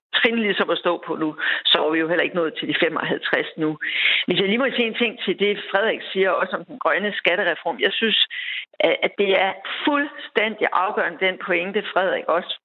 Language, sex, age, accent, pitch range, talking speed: Danish, female, 60-79, native, 200-260 Hz, 210 wpm